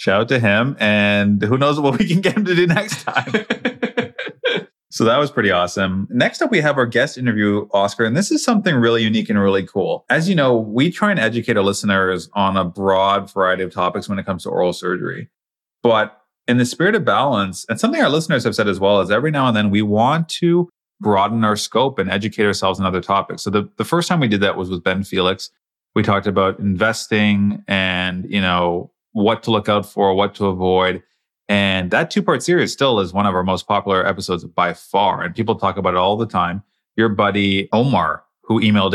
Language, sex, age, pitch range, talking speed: English, male, 30-49, 95-125 Hz, 225 wpm